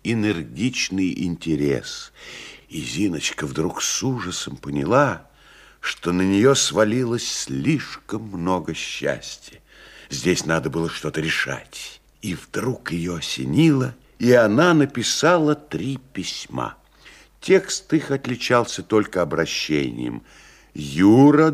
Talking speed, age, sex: 100 wpm, 60-79, male